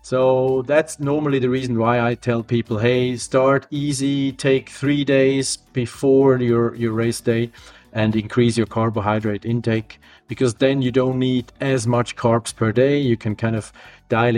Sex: male